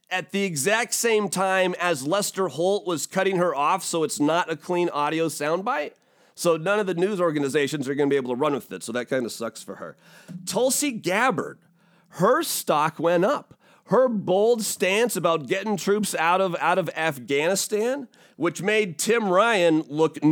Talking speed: 180 wpm